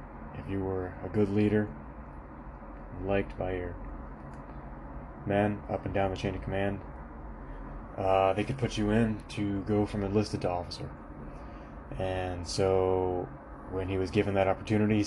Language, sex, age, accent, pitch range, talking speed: English, male, 20-39, American, 90-105 Hz, 150 wpm